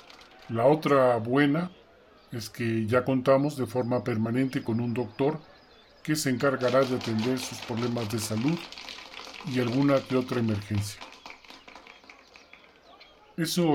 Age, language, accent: 40-59, Spanish, Mexican